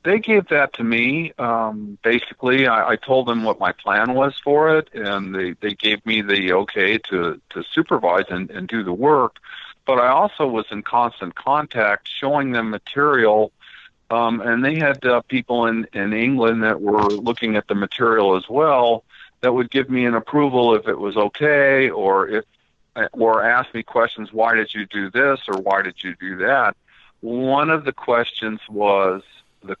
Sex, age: male, 50-69